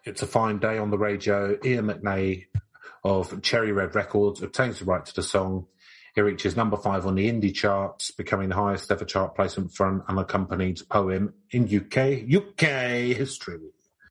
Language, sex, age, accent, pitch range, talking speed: English, male, 40-59, British, 100-125 Hz, 175 wpm